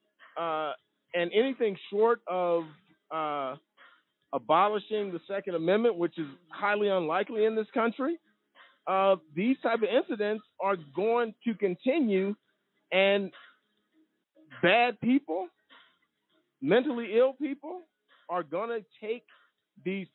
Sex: male